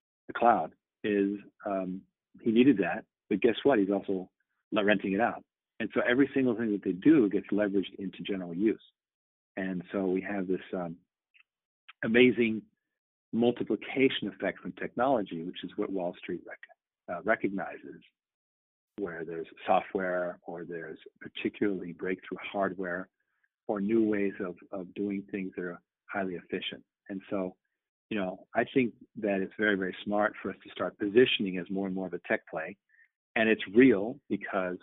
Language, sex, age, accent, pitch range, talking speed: English, male, 50-69, American, 90-110 Hz, 165 wpm